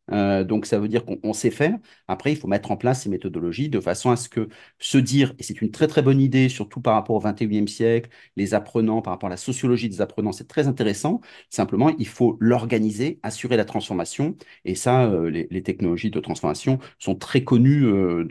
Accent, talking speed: French, 220 wpm